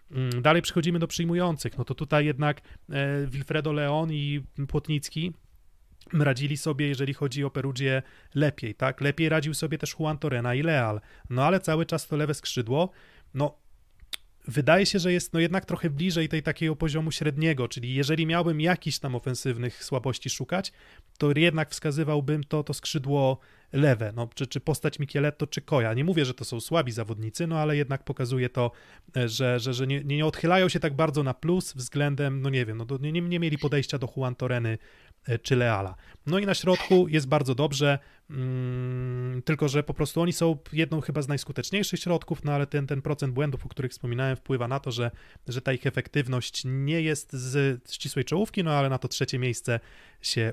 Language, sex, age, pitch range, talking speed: Polish, male, 30-49, 130-155 Hz, 185 wpm